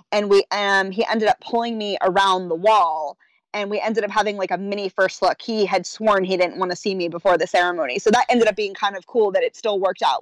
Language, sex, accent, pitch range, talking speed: English, female, American, 195-235 Hz, 270 wpm